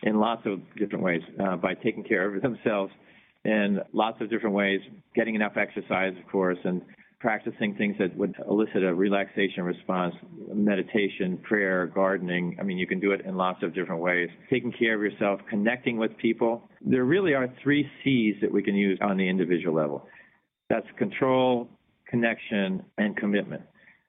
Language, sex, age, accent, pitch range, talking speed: English, male, 40-59, American, 100-120 Hz, 170 wpm